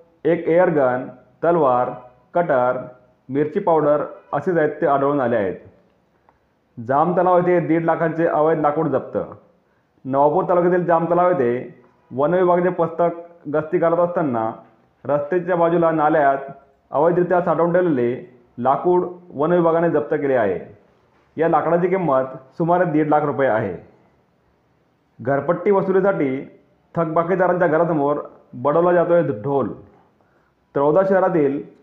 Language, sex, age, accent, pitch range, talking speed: Marathi, male, 30-49, native, 140-175 Hz, 105 wpm